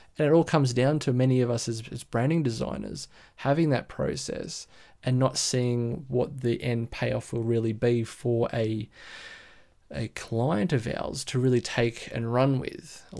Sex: male